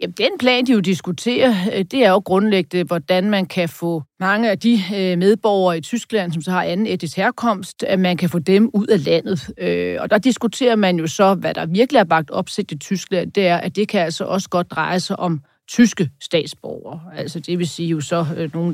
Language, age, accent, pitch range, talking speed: Danish, 40-59, native, 170-200 Hz, 220 wpm